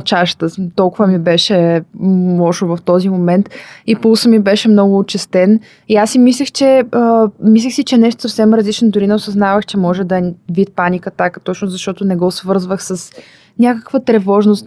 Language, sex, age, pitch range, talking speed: Bulgarian, female, 20-39, 180-220 Hz, 170 wpm